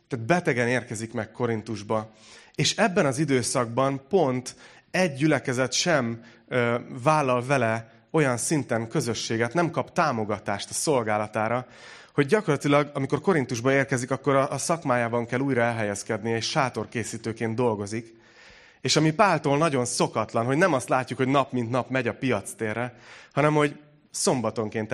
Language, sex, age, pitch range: Hungarian, male, 30-49, 110-145 Hz